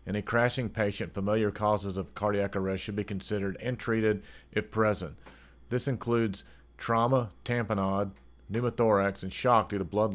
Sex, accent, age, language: male, American, 40-59, English